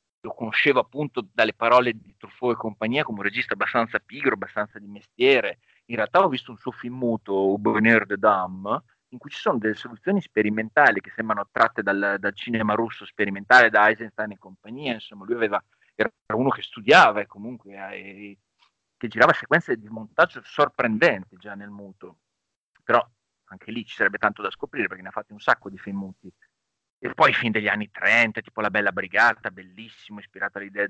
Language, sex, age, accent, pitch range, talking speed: Italian, male, 40-59, native, 100-115 Hz, 190 wpm